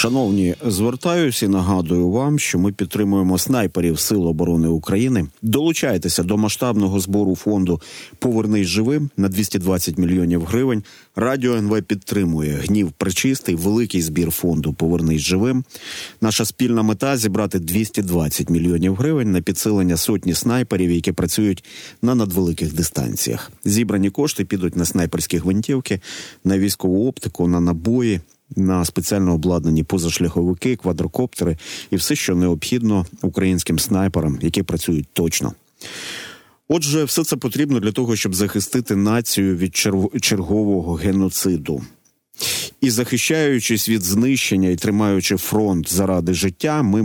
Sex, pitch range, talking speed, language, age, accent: male, 90-110 Hz, 125 wpm, Ukrainian, 30-49, native